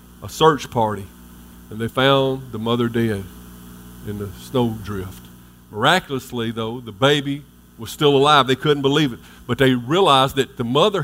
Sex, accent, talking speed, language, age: male, American, 165 wpm, English, 50-69